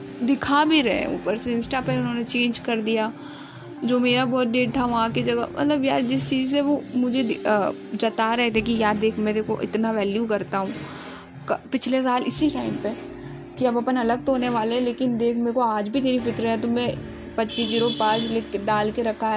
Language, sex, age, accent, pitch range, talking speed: Hindi, female, 20-39, native, 215-265 Hz, 215 wpm